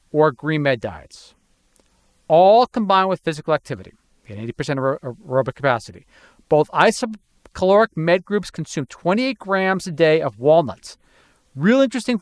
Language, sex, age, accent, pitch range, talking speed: English, male, 40-59, American, 135-185 Hz, 135 wpm